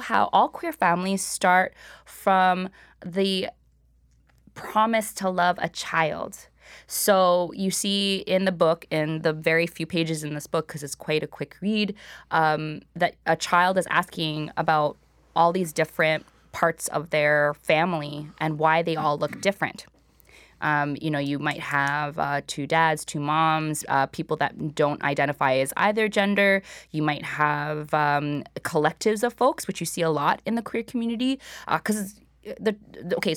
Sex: female